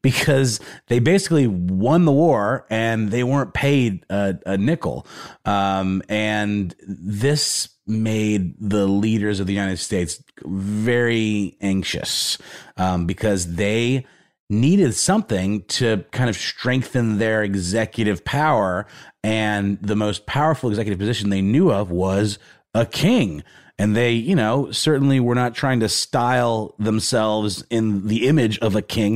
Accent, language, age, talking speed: American, English, 30-49, 135 wpm